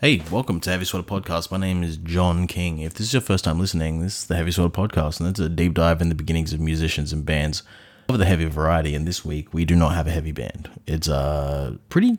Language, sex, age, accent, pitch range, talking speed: English, male, 20-39, Australian, 80-100 Hz, 260 wpm